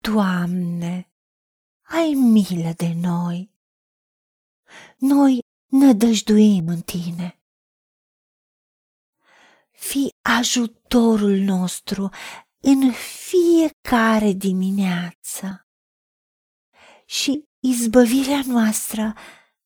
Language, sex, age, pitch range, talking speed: Romanian, female, 40-59, 200-265 Hz, 55 wpm